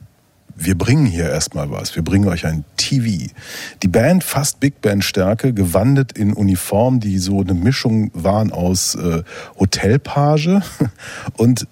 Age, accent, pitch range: 40-59, German, 100-125 Hz